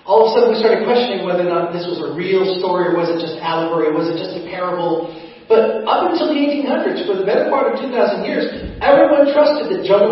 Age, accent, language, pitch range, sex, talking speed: 40-59, American, English, 175-240 Hz, male, 245 wpm